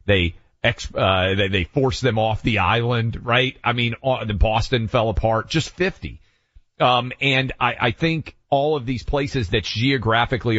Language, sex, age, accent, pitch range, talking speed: English, male, 40-59, American, 95-120 Hz, 175 wpm